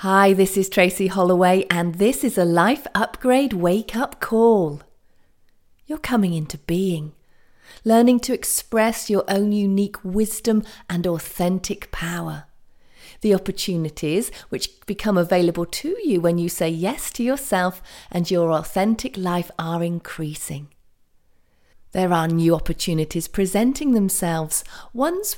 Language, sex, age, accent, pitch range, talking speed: English, female, 40-59, British, 170-235 Hz, 130 wpm